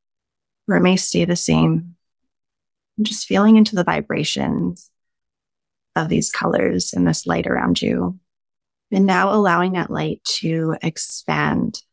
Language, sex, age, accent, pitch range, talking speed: English, female, 20-39, American, 175-215 Hz, 135 wpm